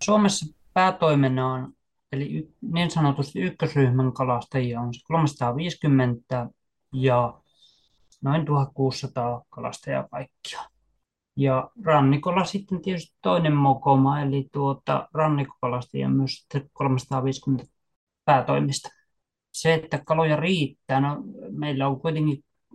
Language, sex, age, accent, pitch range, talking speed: Finnish, male, 20-39, native, 125-145 Hz, 85 wpm